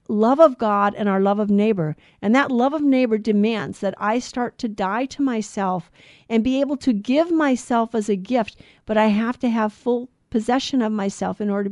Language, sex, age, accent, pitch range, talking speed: English, female, 50-69, American, 205-265 Hz, 215 wpm